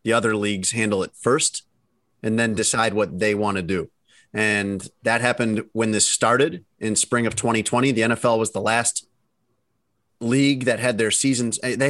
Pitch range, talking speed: 110-125 Hz, 175 wpm